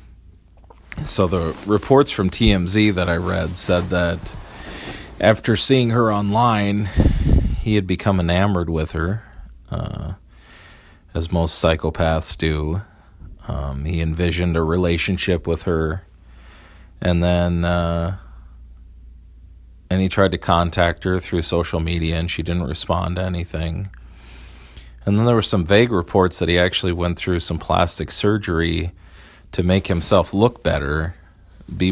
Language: English